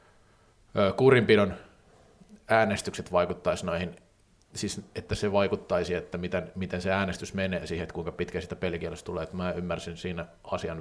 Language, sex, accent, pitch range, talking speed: Finnish, male, native, 90-105 Hz, 140 wpm